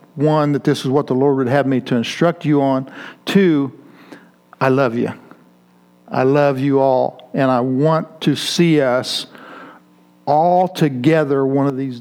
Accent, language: American, English